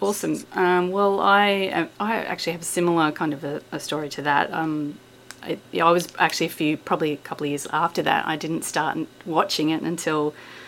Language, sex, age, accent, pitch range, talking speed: English, female, 30-49, Australian, 150-180 Hz, 200 wpm